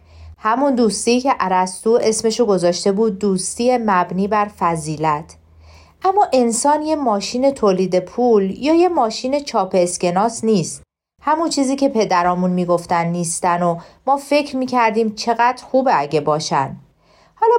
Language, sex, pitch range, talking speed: Persian, female, 190-270 Hz, 130 wpm